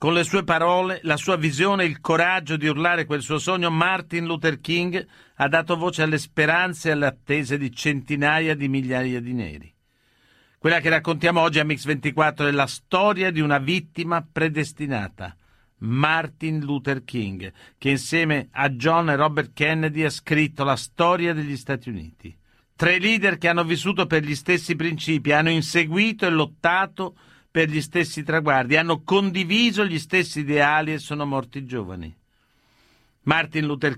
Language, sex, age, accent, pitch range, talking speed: Italian, male, 50-69, native, 140-170 Hz, 160 wpm